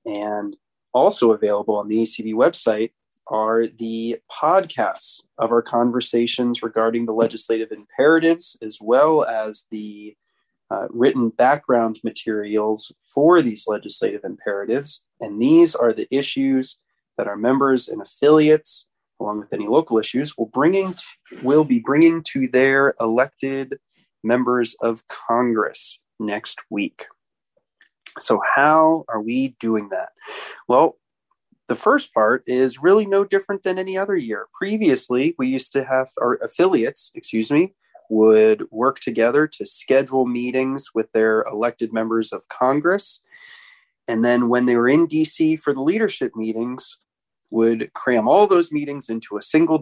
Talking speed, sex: 140 wpm, male